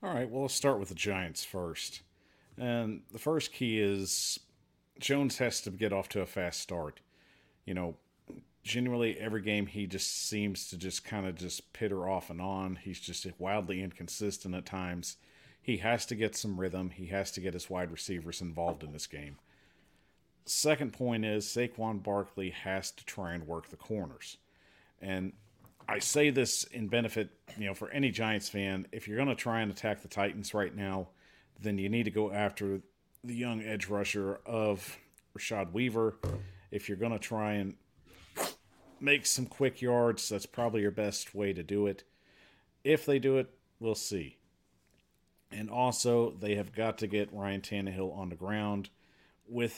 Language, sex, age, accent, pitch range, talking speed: English, male, 40-59, American, 95-115 Hz, 180 wpm